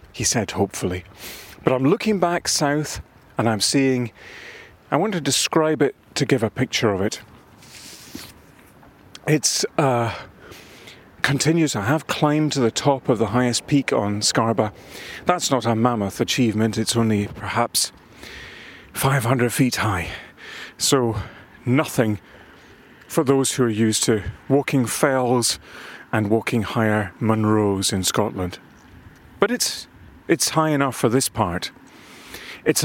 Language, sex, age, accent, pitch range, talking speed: English, male, 40-59, British, 110-140 Hz, 135 wpm